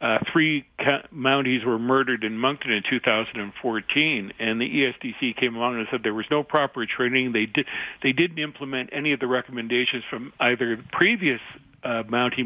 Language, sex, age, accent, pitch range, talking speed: English, male, 60-79, American, 125-155 Hz, 185 wpm